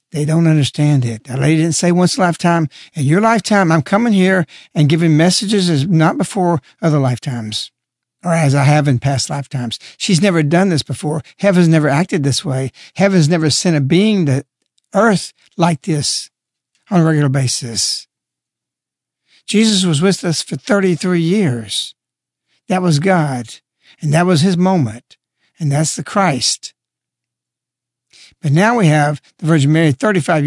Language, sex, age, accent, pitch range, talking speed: English, male, 60-79, American, 135-185 Hz, 165 wpm